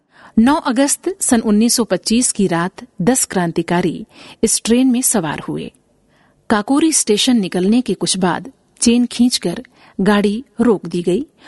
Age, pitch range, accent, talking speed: 50-69, 190-255 Hz, native, 130 wpm